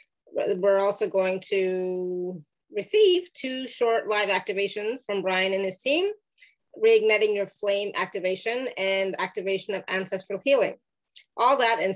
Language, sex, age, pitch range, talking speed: English, female, 30-49, 190-220 Hz, 130 wpm